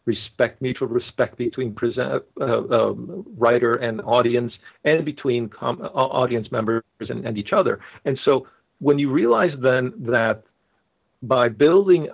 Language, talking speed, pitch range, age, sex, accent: English, 130 wpm, 110-135 Hz, 50-69, male, American